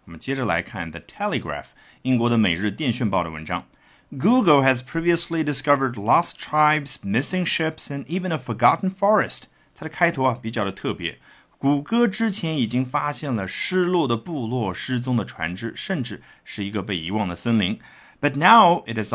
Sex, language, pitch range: male, Chinese, 105-155 Hz